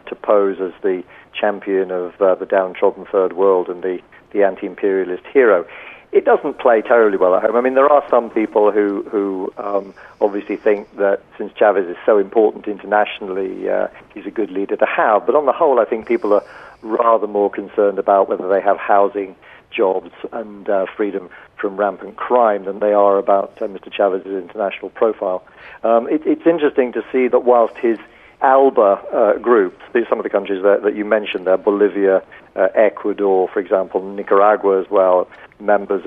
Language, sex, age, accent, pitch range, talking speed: English, male, 50-69, British, 100-125 Hz, 180 wpm